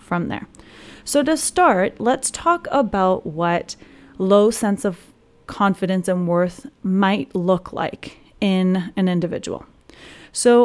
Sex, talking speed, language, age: female, 120 wpm, English, 30-49